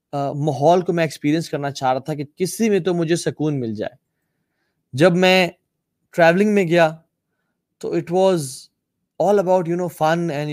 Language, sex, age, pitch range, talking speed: Urdu, male, 20-39, 135-165 Hz, 170 wpm